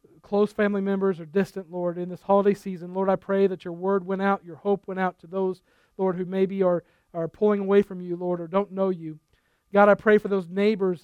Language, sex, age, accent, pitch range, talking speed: English, male, 40-59, American, 180-210 Hz, 240 wpm